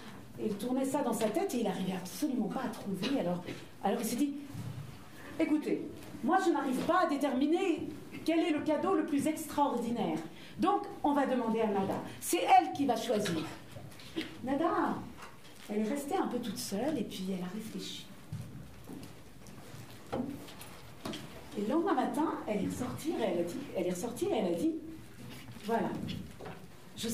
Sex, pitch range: female, 235-330 Hz